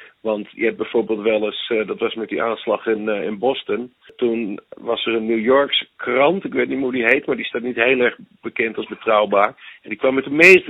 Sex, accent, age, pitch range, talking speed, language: male, Dutch, 50-69, 115-170 Hz, 245 wpm, Dutch